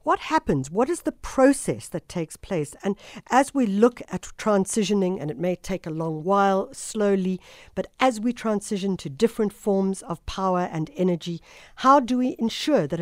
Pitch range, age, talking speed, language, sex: 180-235 Hz, 60-79, 180 wpm, English, female